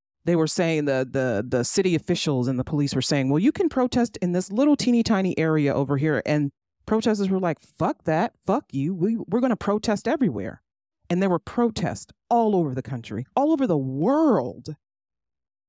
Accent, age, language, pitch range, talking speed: American, 40-59, English, 125-180 Hz, 195 wpm